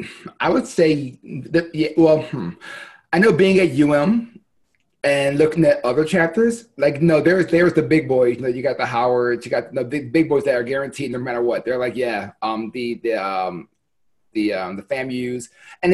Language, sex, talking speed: English, male, 205 wpm